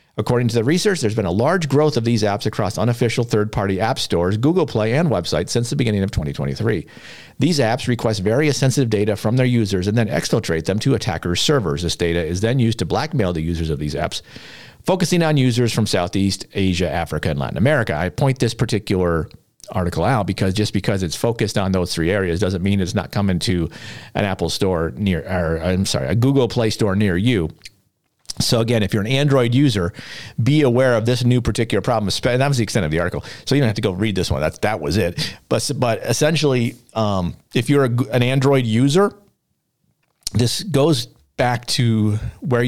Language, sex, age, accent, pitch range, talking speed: English, male, 50-69, American, 95-125 Hz, 205 wpm